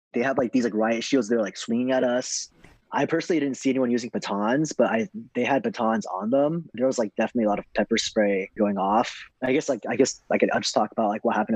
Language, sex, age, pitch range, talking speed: English, male, 20-39, 110-130 Hz, 265 wpm